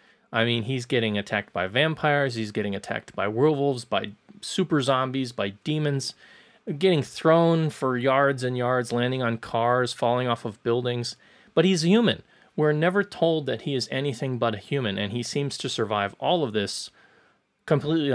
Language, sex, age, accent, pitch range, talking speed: English, male, 30-49, American, 115-145 Hz, 170 wpm